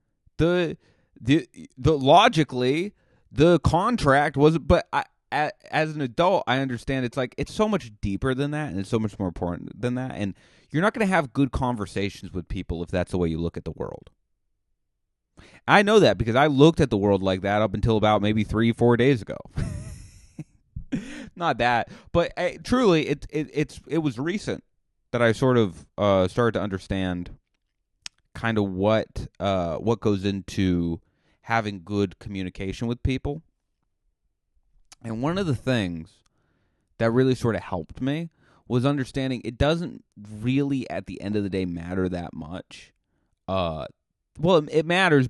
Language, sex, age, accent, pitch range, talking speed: English, male, 30-49, American, 95-145 Hz, 170 wpm